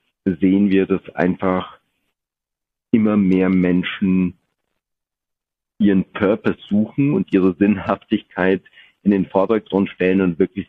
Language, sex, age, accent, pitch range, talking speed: German, male, 50-69, German, 90-100 Hz, 105 wpm